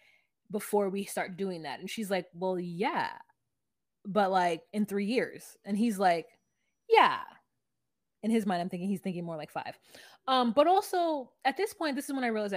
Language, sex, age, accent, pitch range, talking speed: English, female, 20-39, American, 190-255 Hz, 190 wpm